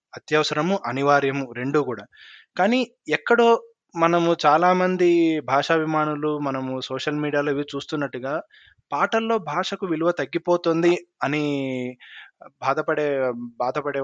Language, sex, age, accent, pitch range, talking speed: Telugu, male, 20-39, native, 135-180 Hz, 90 wpm